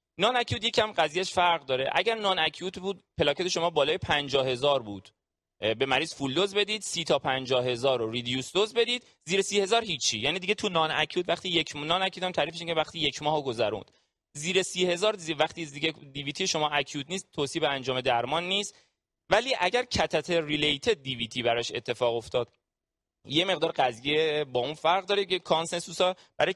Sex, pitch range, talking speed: male, 135-185 Hz, 180 wpm